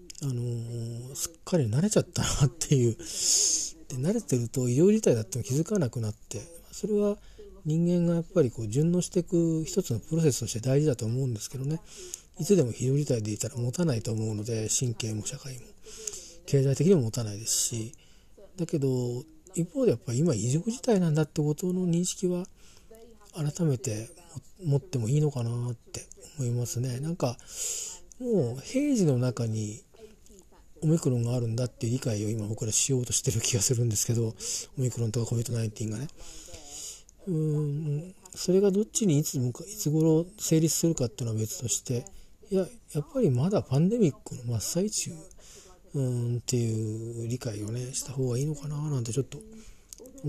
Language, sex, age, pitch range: Japanese, male, 40-59, 120-175 Hz